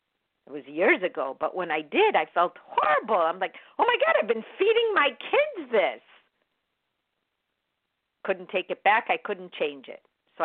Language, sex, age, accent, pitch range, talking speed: English, female, 50-69, American, 180-240 Hz, 180 wpm